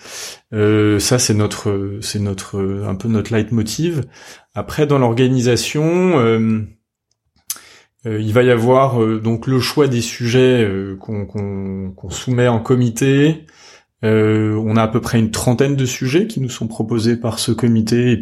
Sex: male